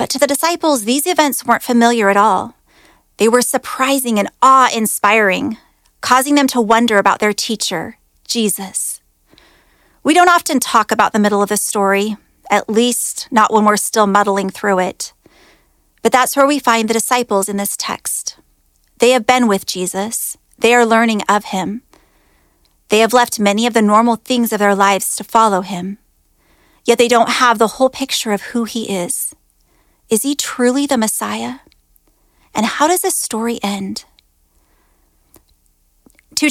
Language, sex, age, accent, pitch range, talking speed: English, female, 30-49, American, 200-250 Hz, 165 wpm